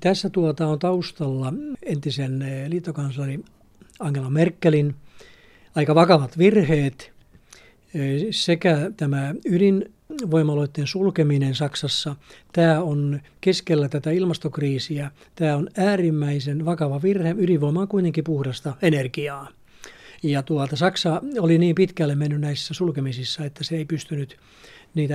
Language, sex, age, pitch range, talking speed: Finnish, male, 60-79, 145-175 Hz, 105 wpm